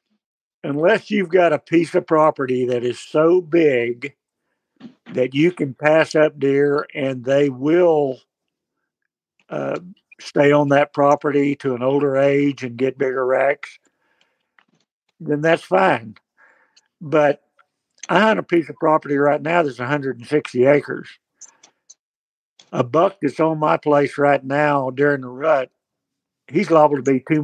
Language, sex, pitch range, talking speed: English, male, 135-160 Hz, 140 wpm